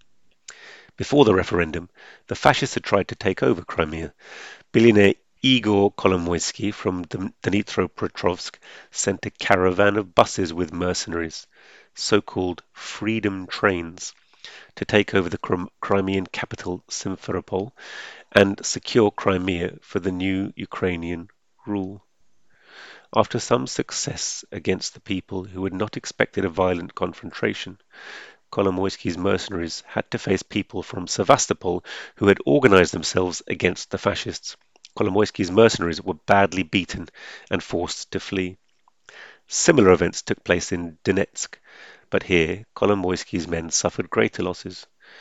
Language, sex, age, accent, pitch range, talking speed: English, male, 40-59, British, 90-100 Hz, 120 wpm